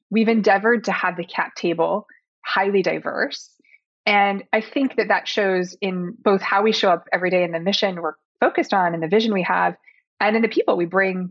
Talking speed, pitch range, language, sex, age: 210 wpm, 180-220 Hz, English, female, 20-39